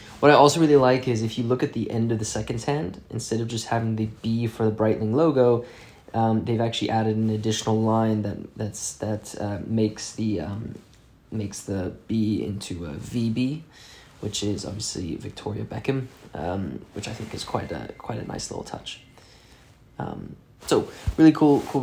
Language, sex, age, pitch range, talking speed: English, male, 20-39, 105-120 Hz, 185 wpm